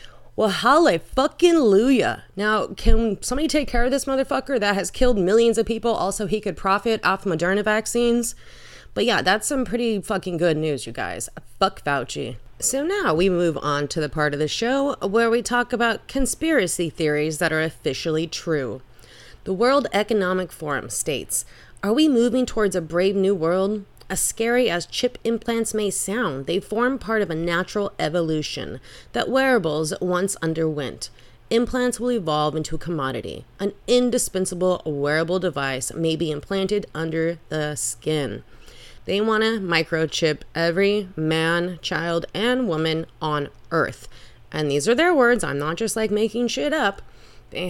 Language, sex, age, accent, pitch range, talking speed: English, female, 30-49, American, 160-230 Hz, 160 wpm